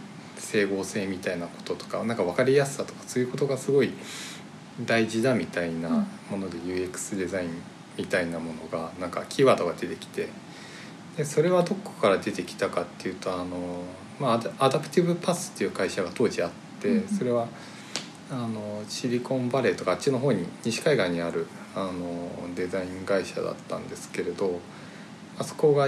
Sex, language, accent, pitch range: male, Japanese, native, 100-160 Hz